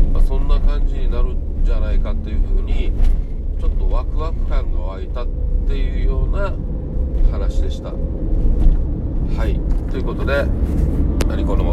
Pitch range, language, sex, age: 70-90 Hz, Japanese, male, 40-59